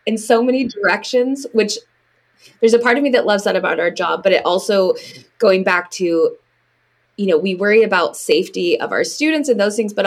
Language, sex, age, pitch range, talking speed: English, female, 20-39, 175-250 Hz, 210 wpm